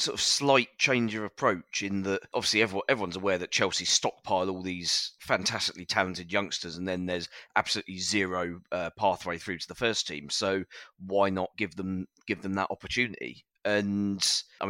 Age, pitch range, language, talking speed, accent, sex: 30-49, 90-105 Hz, English, 170 wpm, British, male